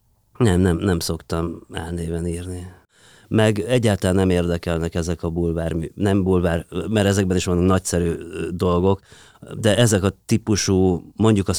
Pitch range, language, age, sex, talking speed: 85-110 Hz, Hungarian, 30-49, male, 140 wpm